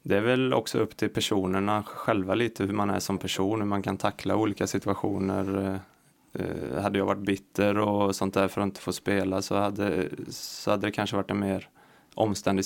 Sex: male